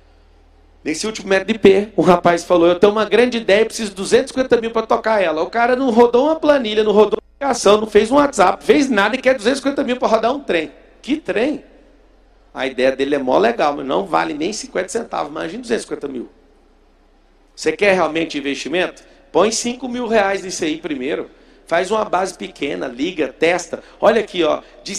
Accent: Brazilian